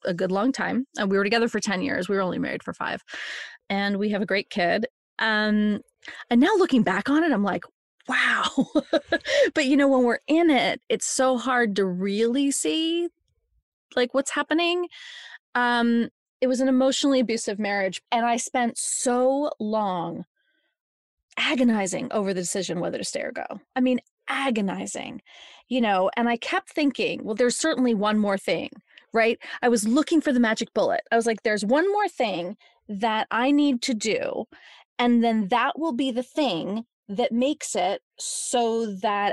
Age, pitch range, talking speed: 20-39, 210-280 Hz, 180 wpm